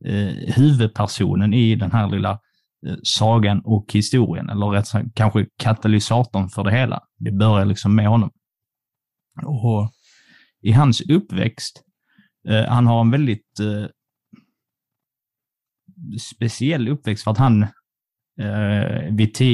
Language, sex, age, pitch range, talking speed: Swedish, male, 30-49, 105-125 Hz, 100 wpm